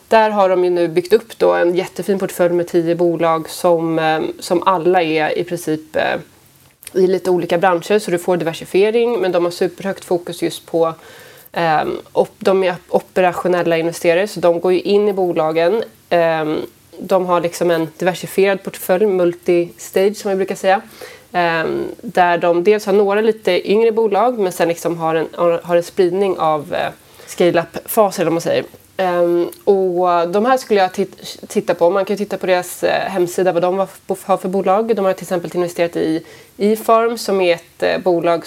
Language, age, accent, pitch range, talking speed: Swedish, 20-39, native, 170-195 Hz, 170 wpm